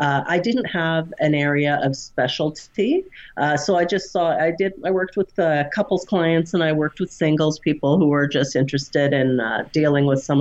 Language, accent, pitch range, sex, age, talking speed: English, American, 130-170 Hz, female, 40-59, 210 wpm